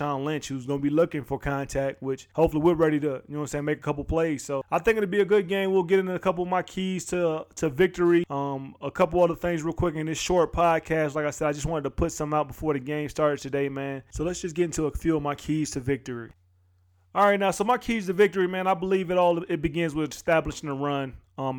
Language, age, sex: English, 20-39, male